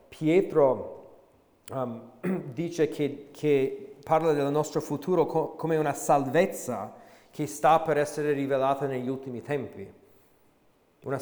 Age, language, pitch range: 40-59, Italian, 125-155 Hz